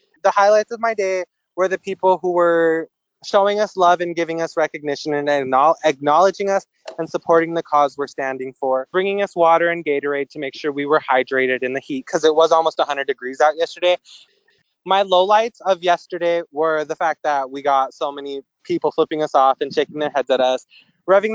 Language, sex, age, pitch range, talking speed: English, male, 20-39, 140-180 Hz, 200 wpm